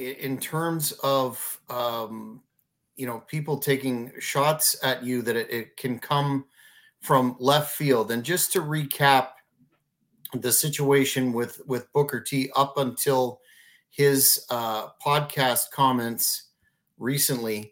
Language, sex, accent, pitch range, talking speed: English, male, American, 125-145 Hz, 120 wpm